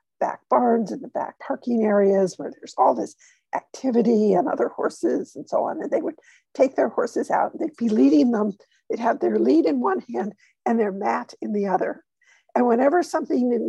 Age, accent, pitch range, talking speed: 50-69, American, 220-325 Hz, 200 wpm